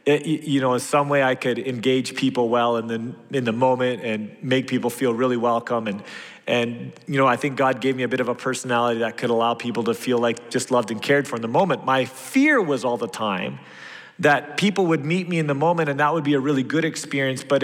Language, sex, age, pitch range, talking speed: English, male, 30-49, 120-150 Hz, 250 wpm